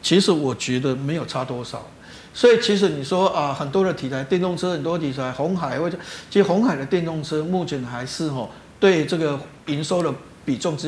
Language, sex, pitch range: Chinese, male, 140-180 Hz